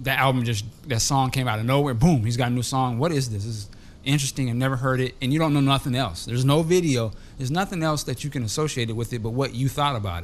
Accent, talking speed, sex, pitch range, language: American, 295 wpm, male, 120-150 Hz, English